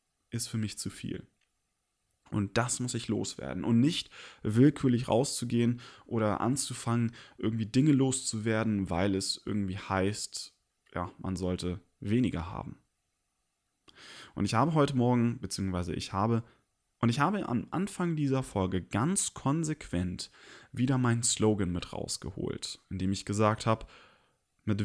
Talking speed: 135 wpm